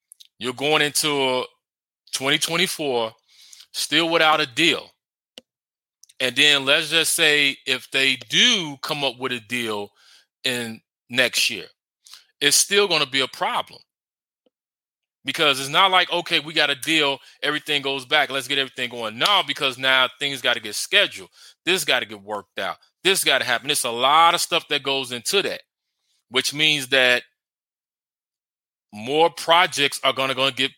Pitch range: 130-155 Hz